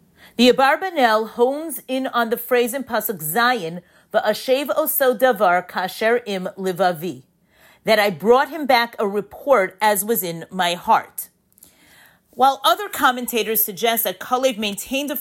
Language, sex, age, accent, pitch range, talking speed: English, female, 40-59, American, 200-265 Hz, 140 wpm